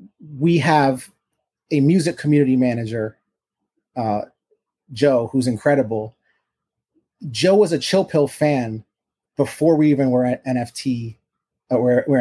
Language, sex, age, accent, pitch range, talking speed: English, male, 30-49, American, 125-150 Hz, 125 wpm